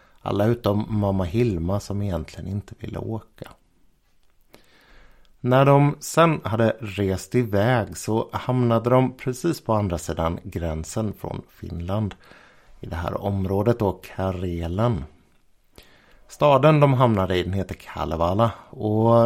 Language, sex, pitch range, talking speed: Swedish, male, 90-120 Hz, 120 wpm